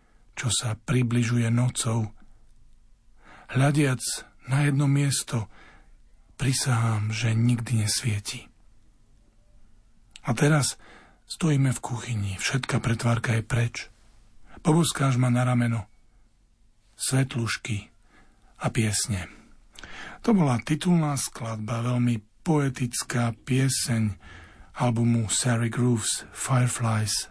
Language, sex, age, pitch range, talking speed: Slovak, male, 50-69, 110-135 Hz, 85 wpm